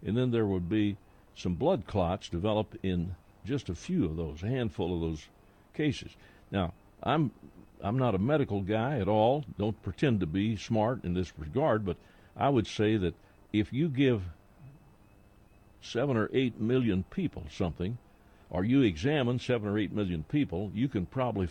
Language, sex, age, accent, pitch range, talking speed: English, male, 60-79, American, 95-120 Hz, 175 wpm